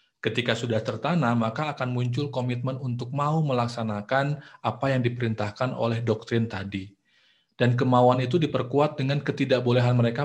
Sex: male